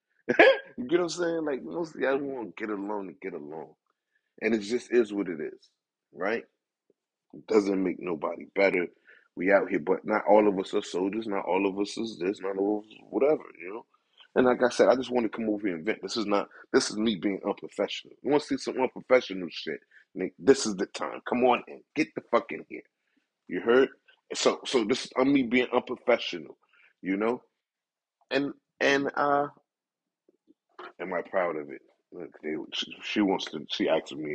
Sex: male